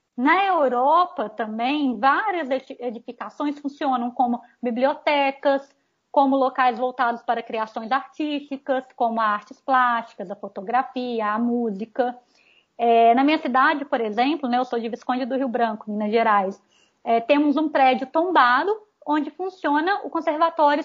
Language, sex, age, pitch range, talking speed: Portuguese, female, 20-39, 235-285 Hz, 130 wpm